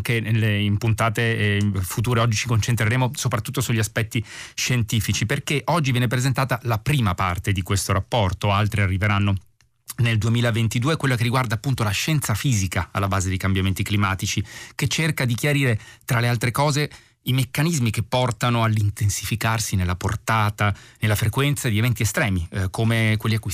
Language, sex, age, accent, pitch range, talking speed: Italian, male, 30-49, native, 105-125 Hz, 155 wpm